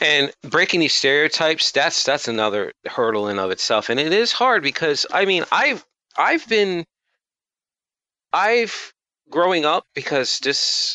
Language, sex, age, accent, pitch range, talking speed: English, male, 30-49, American, 105-140 Hz, 140 wpm